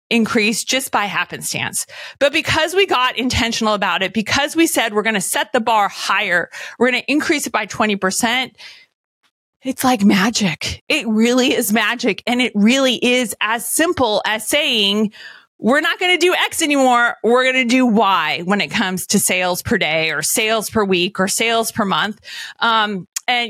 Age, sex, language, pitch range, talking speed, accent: 30-49, female, English, 205-265 Hz, 185 wpm, American